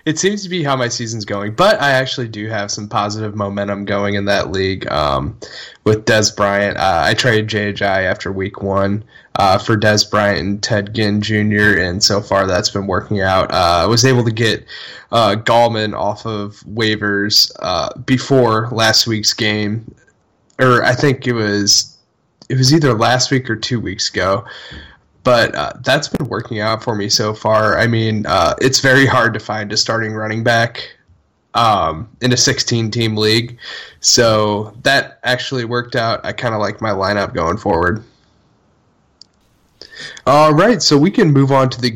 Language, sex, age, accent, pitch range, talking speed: English, male, 10-29, American, 105-120 Hz, 180 wpm